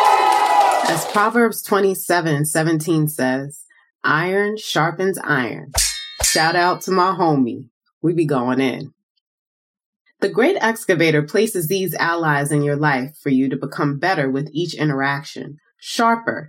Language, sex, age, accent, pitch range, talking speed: English, female, 20-39, American, 145-195 Hz, 130 wpm